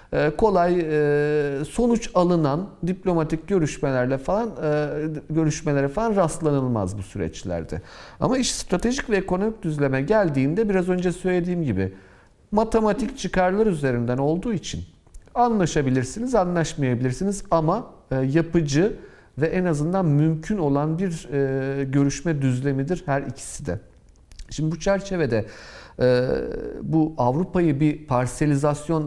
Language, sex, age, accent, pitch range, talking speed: Turkish, male, 50-69, native, 125-185 Hz, 105 wpm